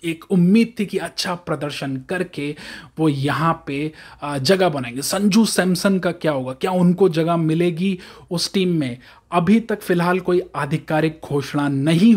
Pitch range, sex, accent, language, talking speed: 145-180 Hz, male, native, Hindi, 155 wpm